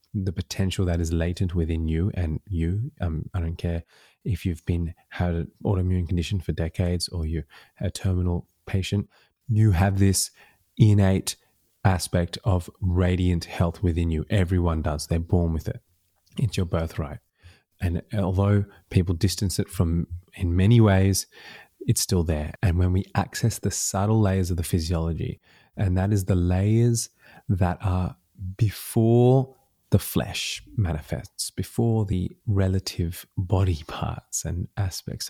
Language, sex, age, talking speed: English, male, 20-39, 145 wpm